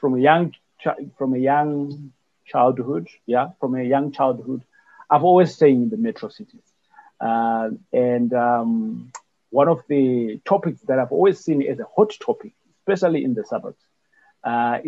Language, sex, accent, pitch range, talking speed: English, male, South African, 125-175 Hz, 160 wpm